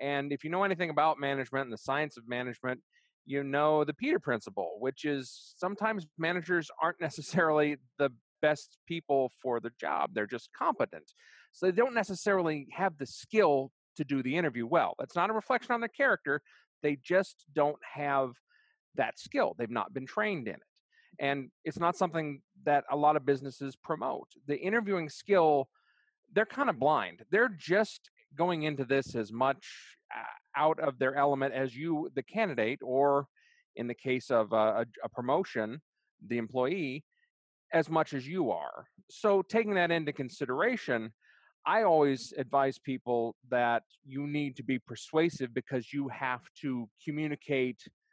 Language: English